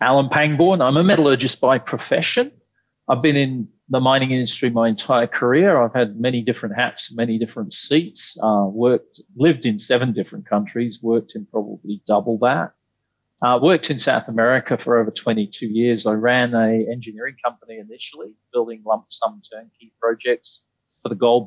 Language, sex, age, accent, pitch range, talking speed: English, male, 40-59, Australian, 110-130 Hz, 165 wpm